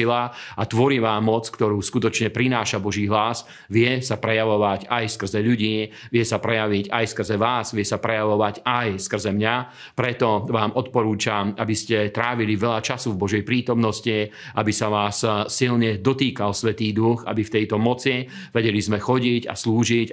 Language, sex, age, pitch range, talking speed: Slovak, male, 40-59, 105-120 Hz, 160 wpm